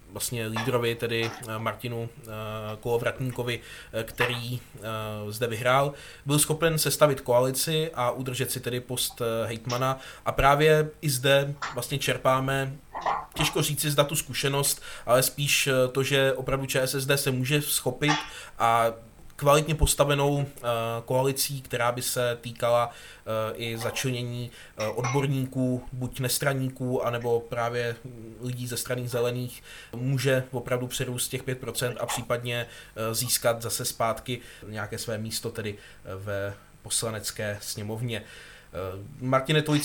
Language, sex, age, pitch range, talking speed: Czech, male, 20-39, 120-135 Hz, 115 wpm